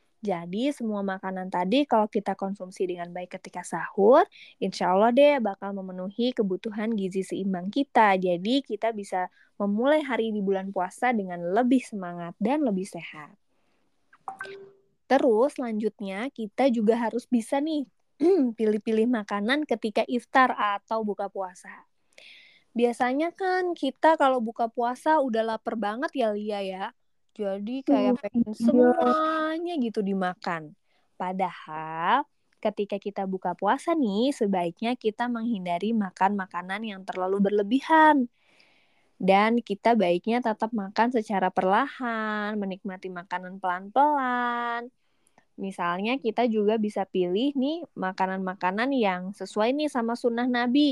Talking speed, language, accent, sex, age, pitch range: 120 wpm, Indonesian, native, female, 20-39, 190-245 Hz